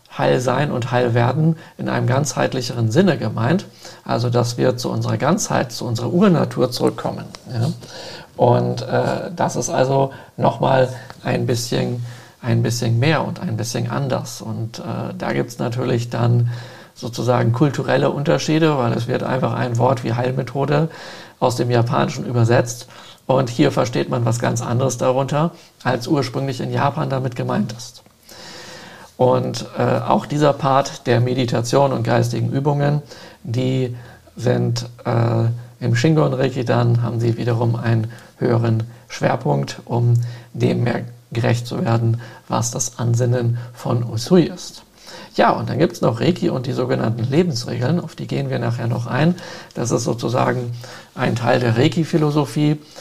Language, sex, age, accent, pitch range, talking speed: German, male, 50-69, German, 120-140 Hz, 150 wpm